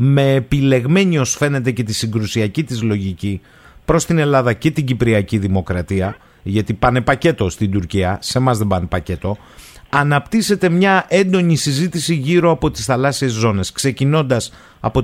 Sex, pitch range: male, 110-155 Hz